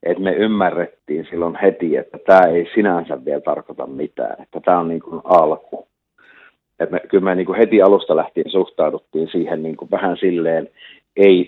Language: Finnish